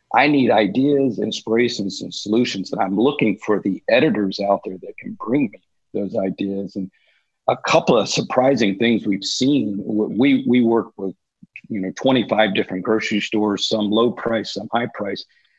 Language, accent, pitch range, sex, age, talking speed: English, American, 100-115 Hz, male, 50-69, 170 wpm